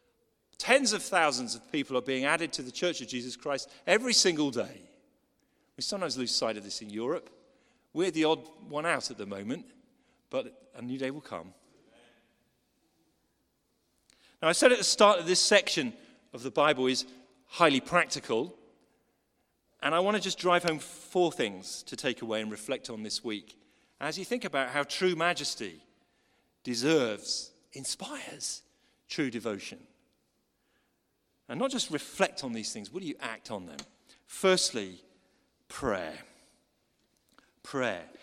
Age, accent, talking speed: 40-59, British, 155 wpm